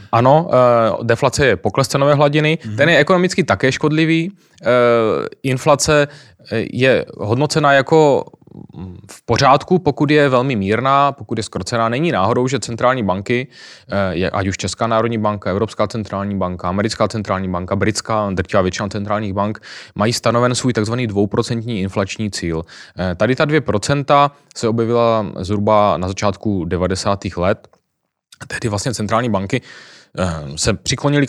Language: Czech